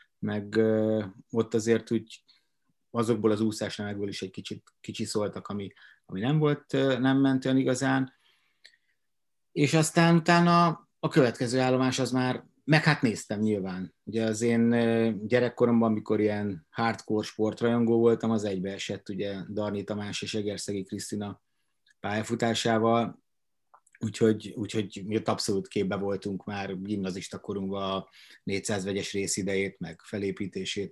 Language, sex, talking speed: Hungarian, male, 125 wpm